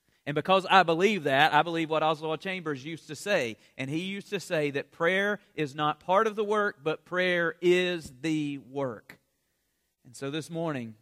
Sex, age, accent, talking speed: male, 40-59, American, 190 wpm